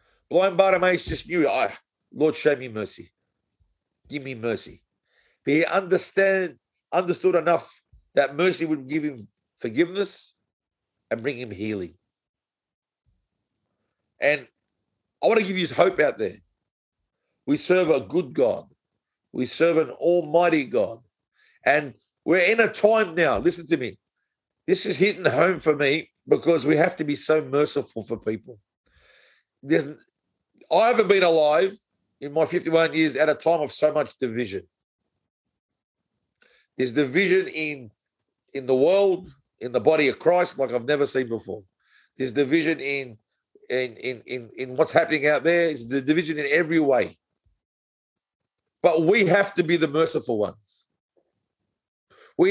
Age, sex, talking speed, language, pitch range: 50-69, male, 140 wpm, English, 135-175 Hz